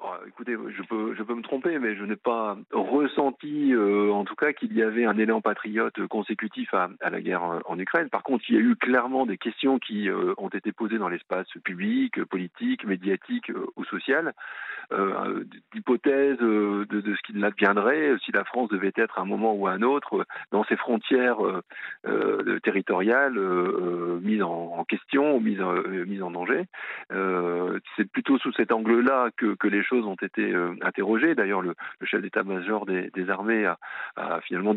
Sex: male